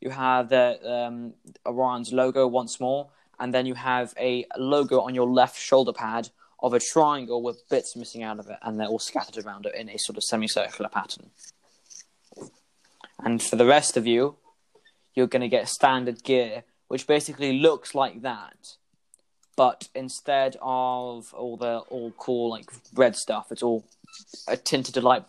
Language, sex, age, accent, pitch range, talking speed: English, male, 10-29, British, 115-130 Hz, 170 wpm